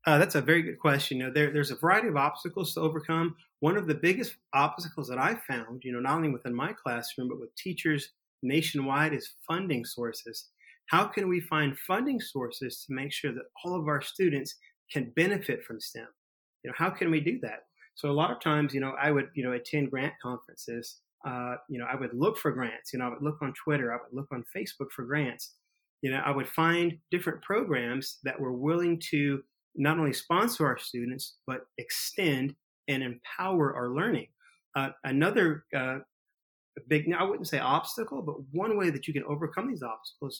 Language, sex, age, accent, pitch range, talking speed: English, male, 30-49, American, 130-165 Hz, 205 wpm